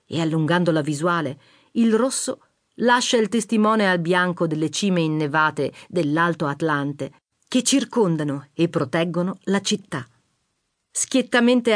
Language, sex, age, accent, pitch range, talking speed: Italian, female, 40-59, native, 160-220 Hz, 115 wpm